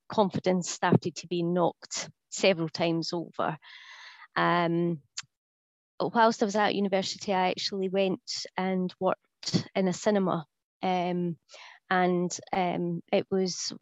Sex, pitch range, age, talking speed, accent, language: female, 175-195 Hz, 20-39, 115 wpm, British, English